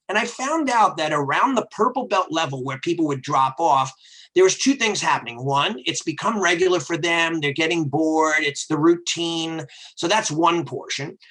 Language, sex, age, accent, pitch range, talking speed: English, male, 40-59, American, 150-185 Hz, 190 wpm